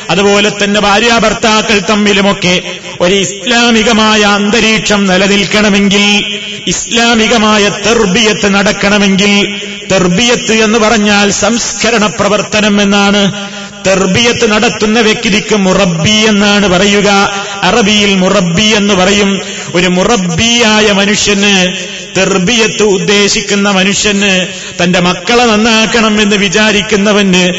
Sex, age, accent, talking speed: male, 30-49, native, 85 wpm